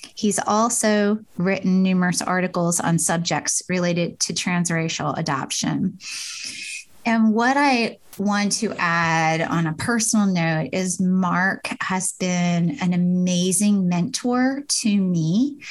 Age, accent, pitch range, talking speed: 20-39, American, 170-210 Hz, 115 wpm